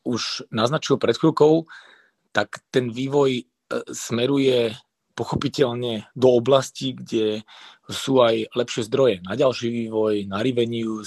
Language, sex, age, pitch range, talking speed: Slovak, male, 30-49, 110-130 Hz, 115 wpm